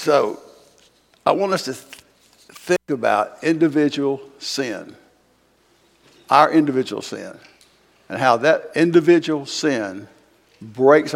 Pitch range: 130-165 Hz